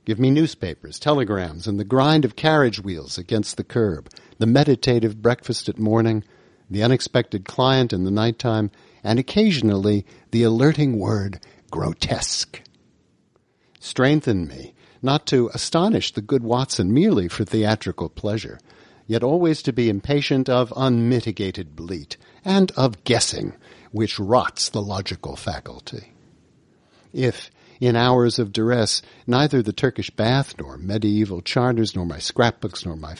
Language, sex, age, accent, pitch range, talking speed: English, male, 50-69, American, 100-130 Hz, 135 wpm